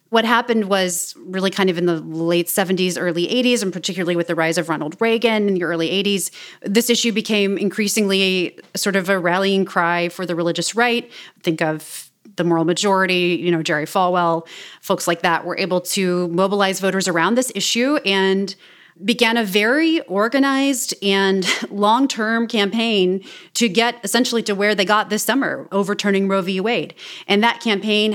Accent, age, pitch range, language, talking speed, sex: American, 30-49, 175-215 Hz, English, 175 wpm, female